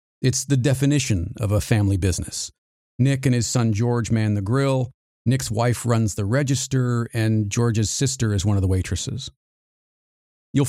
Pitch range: 105-130 Hz